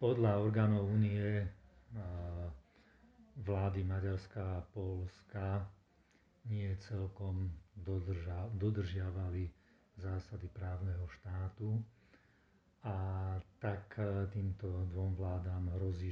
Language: Slovak